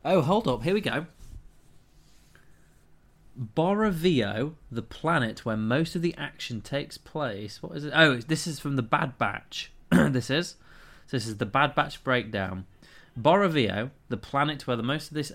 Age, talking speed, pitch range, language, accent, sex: 20-39, 170 wpm, 110-155 Hz, English, British, male